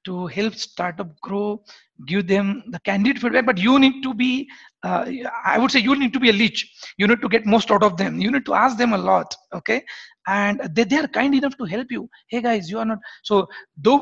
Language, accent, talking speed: English, Indian, 240 wpm